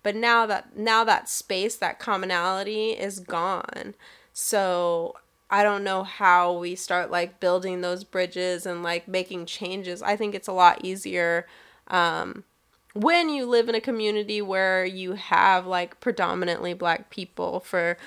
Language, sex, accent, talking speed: English, female, American, 155 wpm